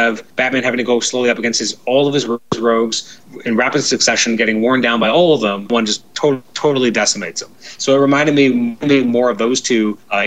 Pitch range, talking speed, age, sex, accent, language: 115-145 Hz, 235 wpm, 30-49, male, American, English